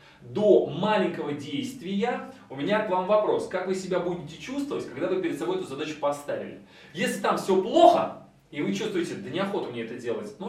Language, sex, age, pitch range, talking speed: Russian, male, 30-49, 145-205 Hz, 190 wpm